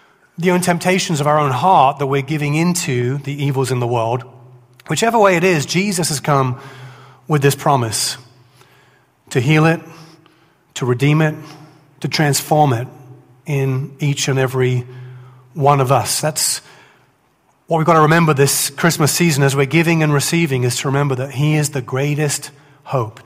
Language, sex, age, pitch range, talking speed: English, male, 30-49, 130-160 Hz, 170 wpm